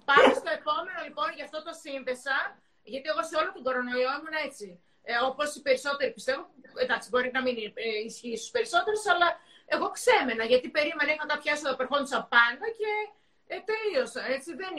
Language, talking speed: Greek, 170 wpm